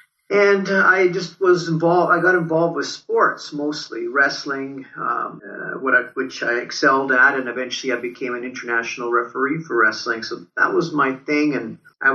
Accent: American